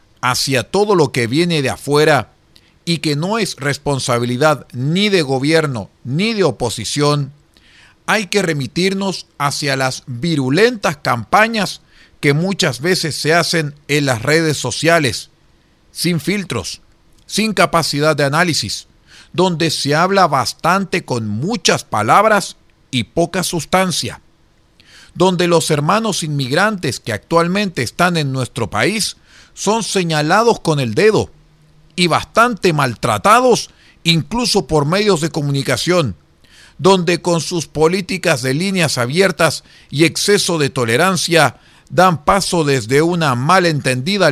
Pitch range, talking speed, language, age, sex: 135-180 Hz, 120 wpm, Spanish, 40-59, male